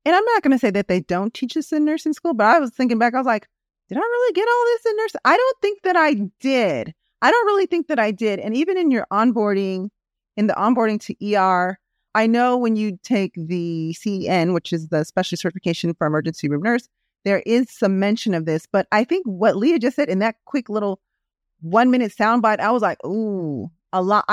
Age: 30-49